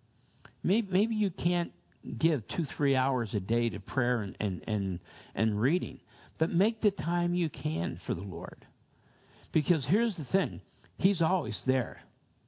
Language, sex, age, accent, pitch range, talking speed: English, male, 60-79, American, 125-180 Hz, 155 wpm